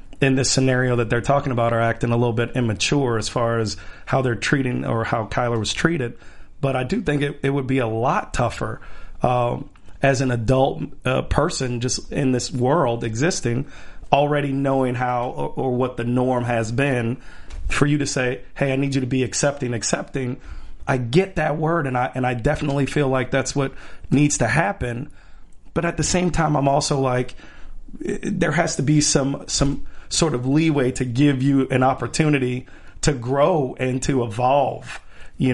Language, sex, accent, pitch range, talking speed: English, male, American, 125-145 Hz, 190 wpm